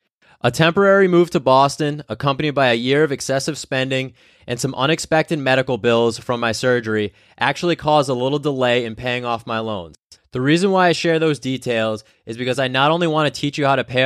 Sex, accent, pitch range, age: male, American, 120-155 Hz, 20-39